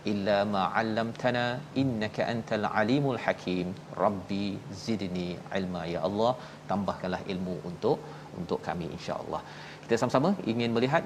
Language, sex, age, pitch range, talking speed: Malayalam, male, 40-59, 110-130 Hz, 120 wpm